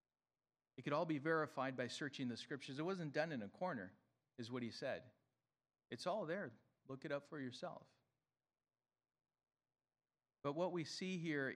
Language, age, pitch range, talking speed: English, 40-59, 130-160 Hz, 165 wpm